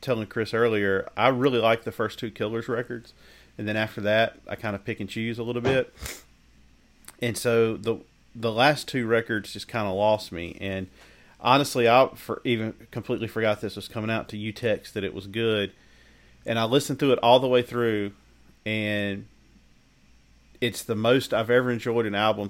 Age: 40-59